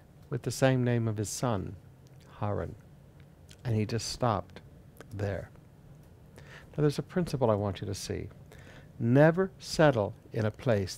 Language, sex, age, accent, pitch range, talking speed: English, male, 60-79, American, 110-160 Hz, 150 wpm